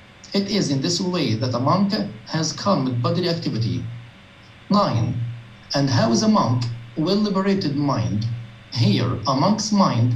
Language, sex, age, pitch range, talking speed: English, male, 50-69, 115-190 Hz, 155 wpm